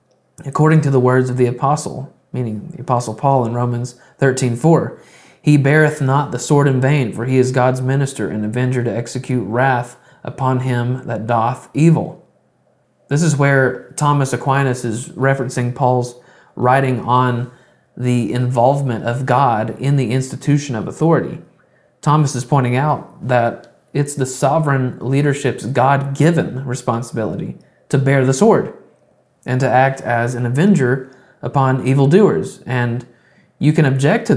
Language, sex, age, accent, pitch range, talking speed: English, male, 30-49, American, 125-140 Hz, 145 wpm